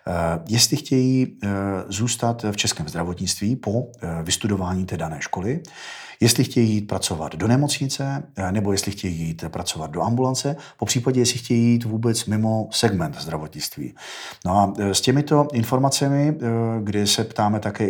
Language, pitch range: Czech, 90-110 Hz